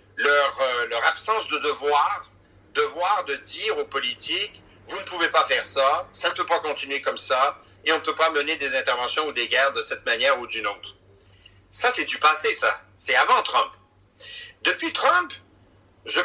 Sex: male